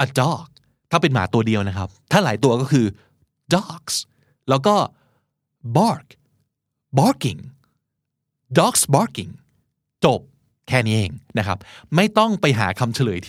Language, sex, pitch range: Thai, male, 115-155 Hz